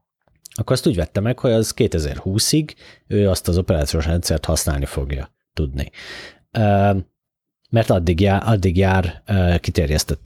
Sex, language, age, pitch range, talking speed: male, Hungarian, 30-49, 80-95 Hz, 130 wpm